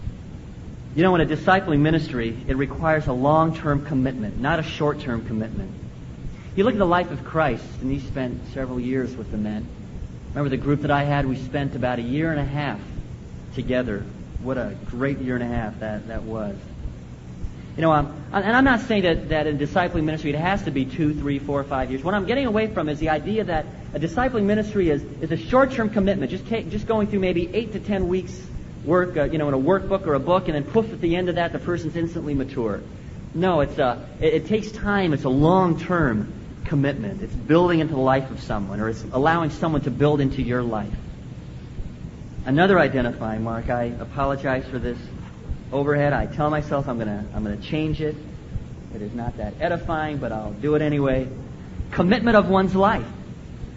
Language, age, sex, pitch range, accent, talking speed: English, 40-59, male, 125-170 Hz, American, 205 wpm